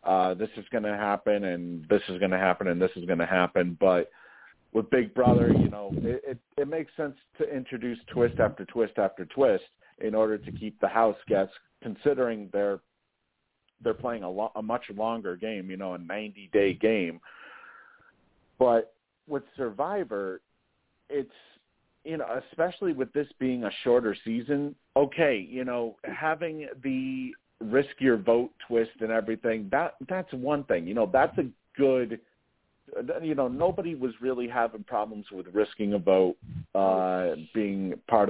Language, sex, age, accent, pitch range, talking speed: English, male, 50-69, American, 100-130 Hz, 160 wpm